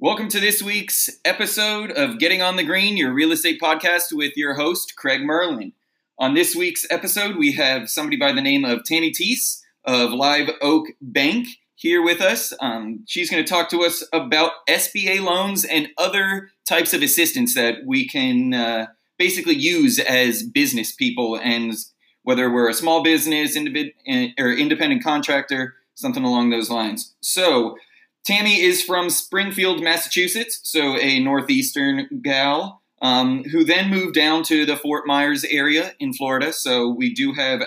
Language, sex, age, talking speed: English, male, 20-39, 165 wpm